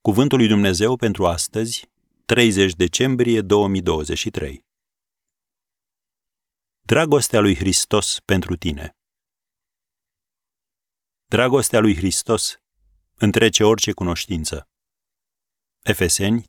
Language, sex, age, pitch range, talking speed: Romanian, male, 40-59, 85-105 Hz, 75 wpm